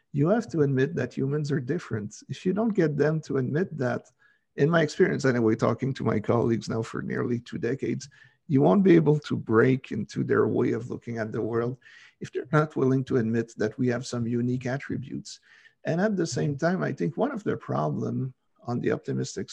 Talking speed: 210 wpm